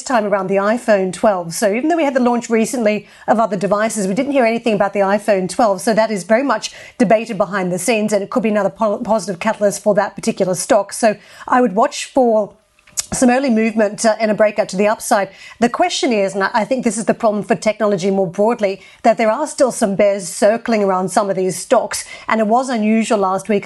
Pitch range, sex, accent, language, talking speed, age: 200-225 Hz, female, Australian, English, 230 wpm, 40-59